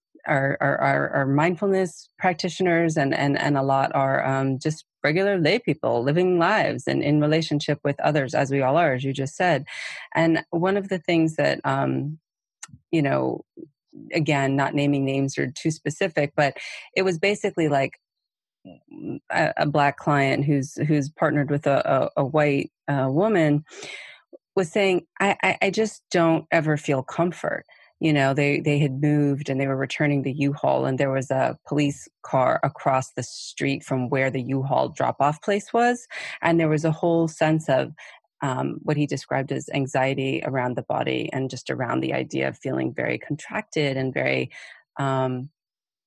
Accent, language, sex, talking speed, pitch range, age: American, English, female, 170 wpm, 135-165 Hz, 30-49